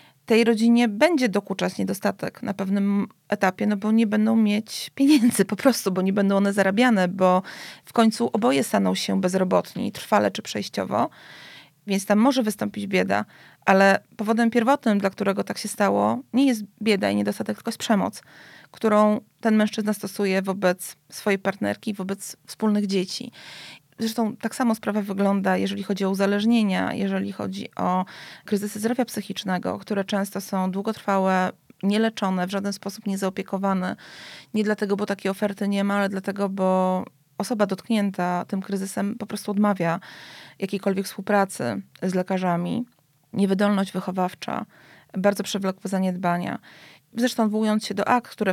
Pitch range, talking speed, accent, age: 190-215 Hz, 145 wpm, native, 30-49